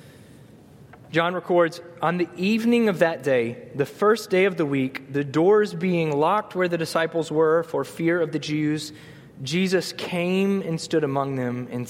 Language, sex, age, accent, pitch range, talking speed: English, male, 20-39, American, 145-185 Hz, 170 wpm